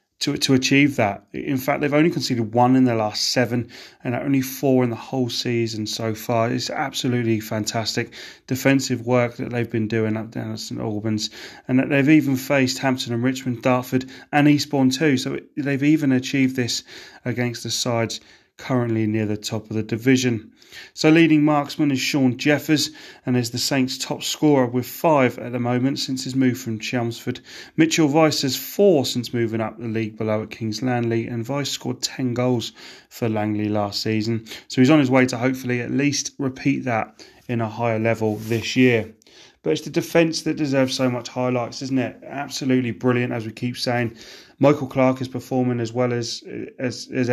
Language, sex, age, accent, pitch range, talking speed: English, male, 30-49, British, 115-135 Hz, 190 wpm